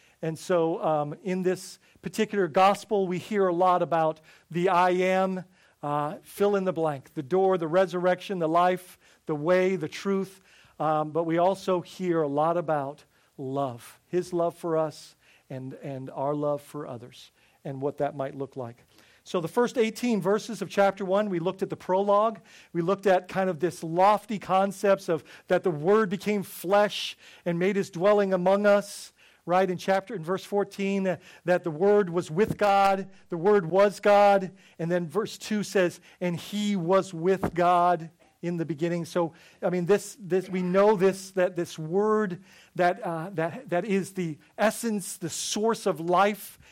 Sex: male